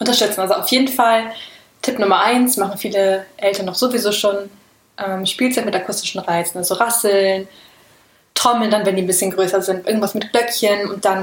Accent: German